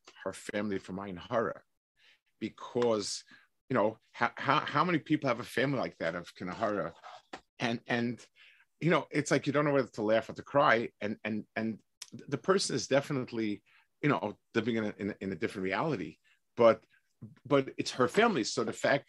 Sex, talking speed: male, 180 wpm